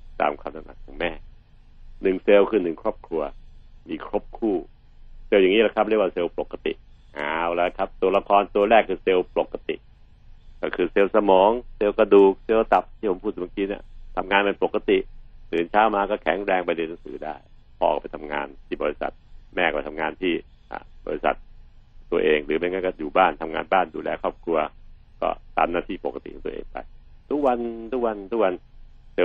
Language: Thai